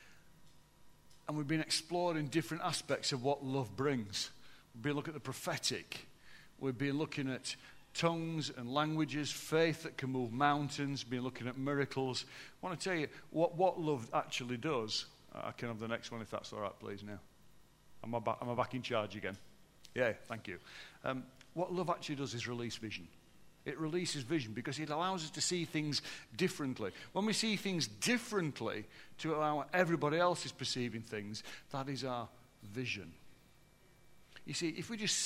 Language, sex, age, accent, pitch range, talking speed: English, male, 50-69, British, 115-155 Hz, 175 wpm